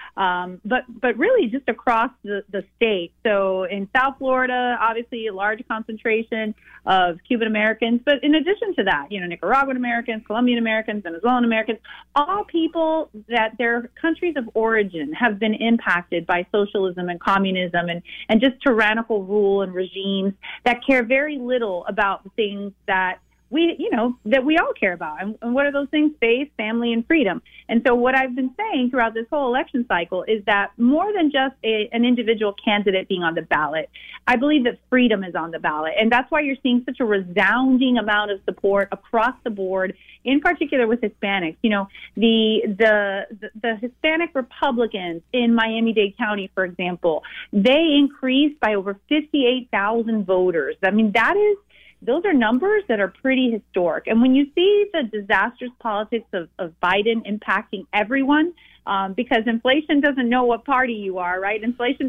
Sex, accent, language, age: female, American, English, 30-49